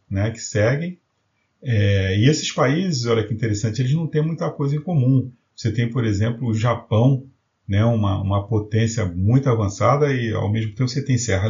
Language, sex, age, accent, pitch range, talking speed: Portuguese, male, 40-59, Brazilian, 105-135 Hz, 190 wpm